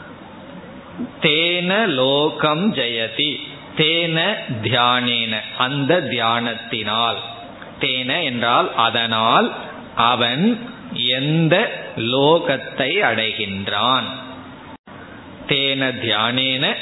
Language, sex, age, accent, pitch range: Tamil, male, 20-39, native, 120-150 Hz